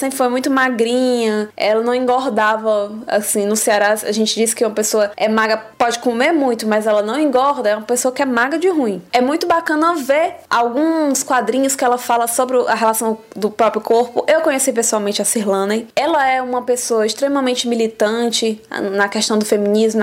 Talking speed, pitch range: 190 wpm, 215-265 Hz